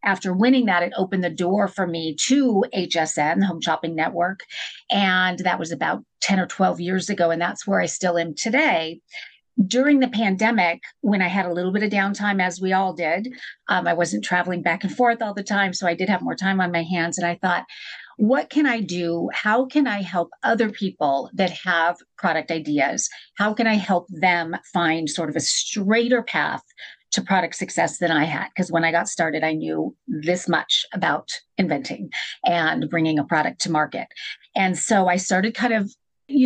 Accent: American